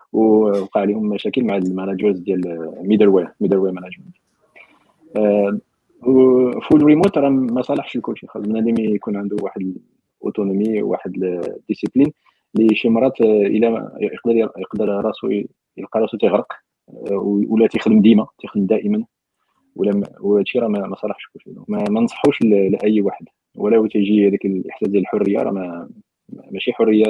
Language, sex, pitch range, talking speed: Arabic, male, 100-130 Hz, 140 wpm